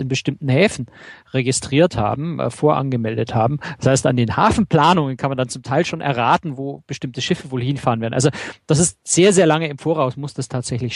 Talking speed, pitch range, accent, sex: 205 wpm, 120-150 Hz, German, male